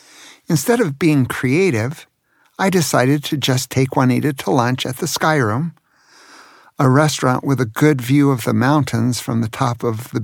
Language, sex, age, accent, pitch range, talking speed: English, male, 50-69, American, 130-165 Hz, 175 wpm